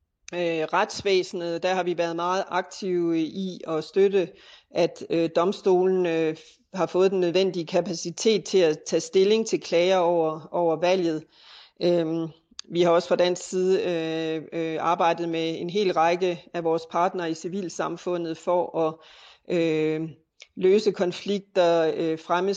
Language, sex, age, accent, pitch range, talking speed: Danish, female, 40-59, native, 165-190 Hz, 125 wpm